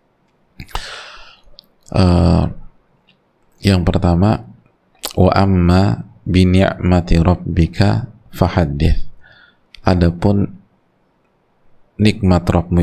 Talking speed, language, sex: 45 wpm, Indonesian, male